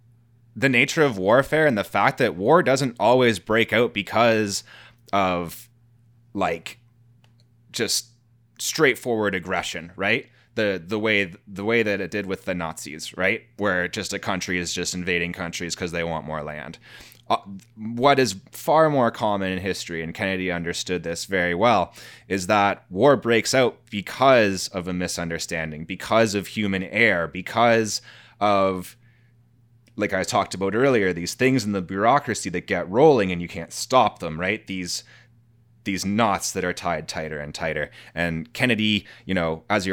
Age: 20-39